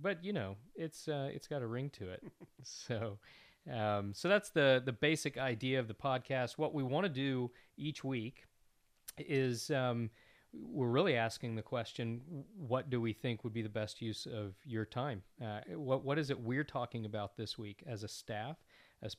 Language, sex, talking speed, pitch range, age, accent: English, male, 195 wpm, 110-130 Hz, 40-59, American